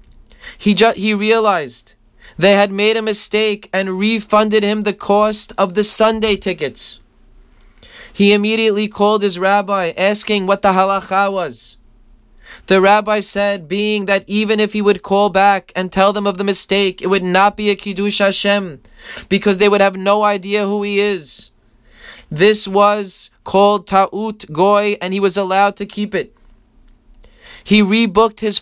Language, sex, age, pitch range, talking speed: English, male, 20-39, 195-210 Hz, 160 wpm